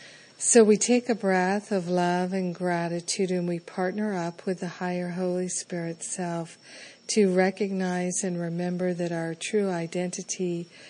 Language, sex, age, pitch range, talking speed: English, female, 50-69, 175-200 Hz, 150 wpm